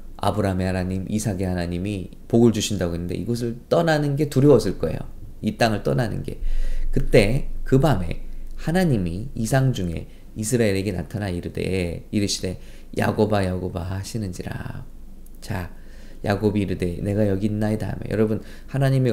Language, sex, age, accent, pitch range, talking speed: English, male, 20-39, Korean, 95-115 Hz, 120 wpm